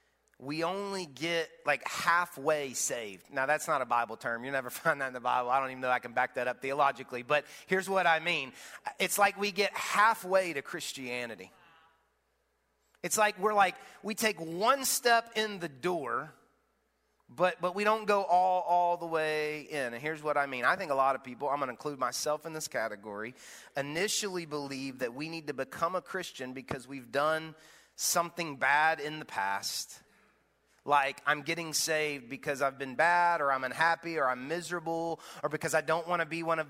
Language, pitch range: English, 140-195 Hz